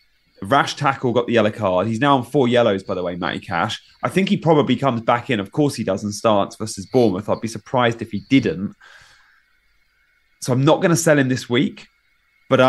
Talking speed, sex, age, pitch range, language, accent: 220 wpm, male, 30-49, 105-150 Hz, English, British